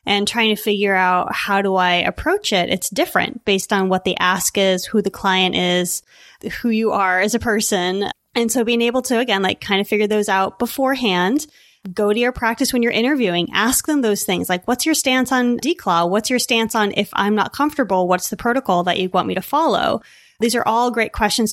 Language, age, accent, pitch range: English, 20-39, American, 190-250 Hz